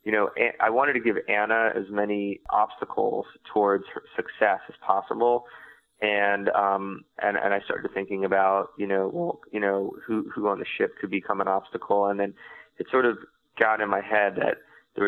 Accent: American